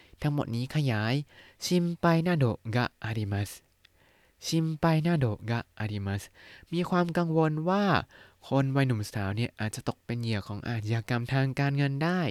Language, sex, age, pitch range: Thai, male, 20-39, 105-140 Hz